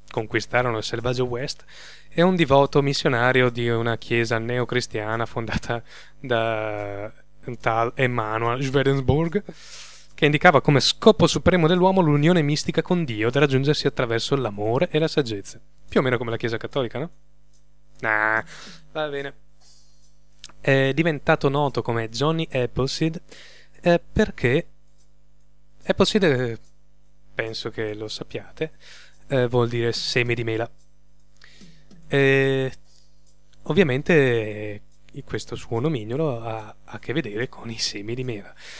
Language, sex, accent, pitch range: Italian, male, native, 110-150 Hz